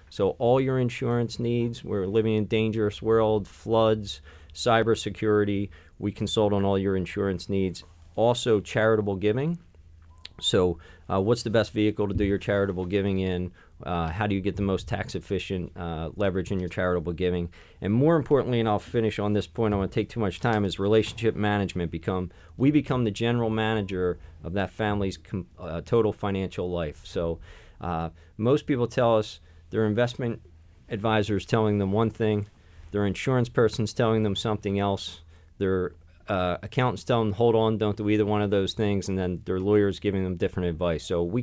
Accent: American